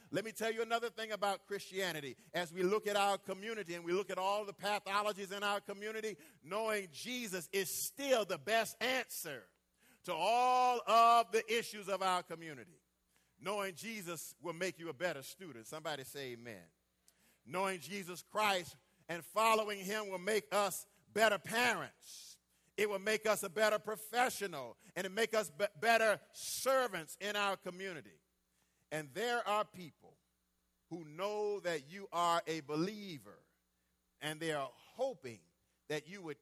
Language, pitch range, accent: English, 150-205 Hz, American